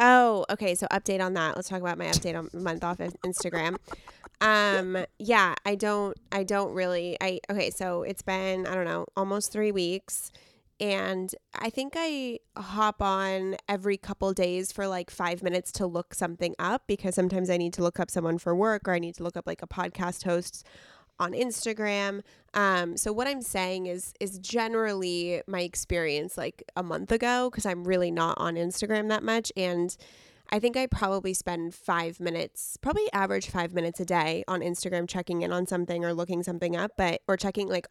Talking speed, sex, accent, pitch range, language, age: 195 wpm, female, American, 175-205 Hz, English, 20-39